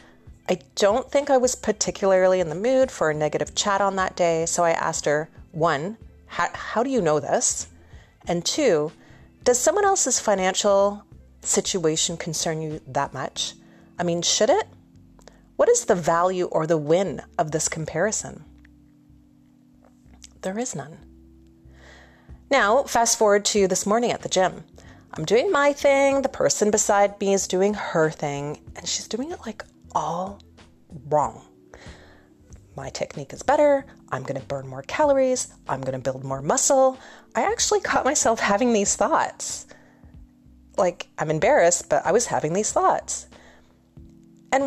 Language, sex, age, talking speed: English, female, 30-49, 155 wpm